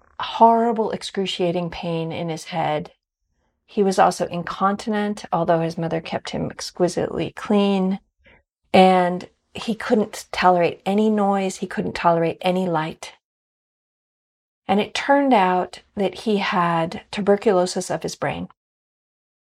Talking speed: 120 wpm